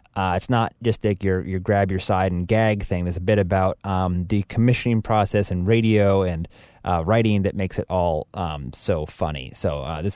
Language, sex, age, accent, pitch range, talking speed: English, male, 20-39, American, 90-110 Hz, 215 wpm